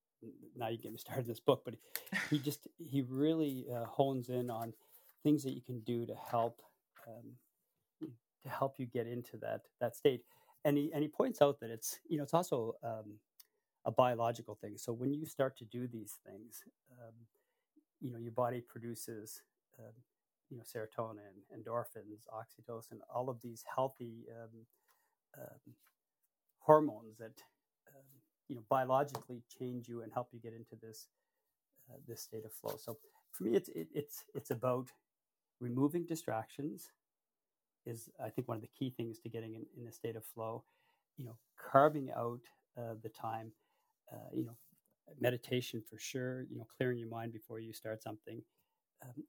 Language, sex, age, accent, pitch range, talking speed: English, male, 40-59, American, 115-135 Hz, 175 wpm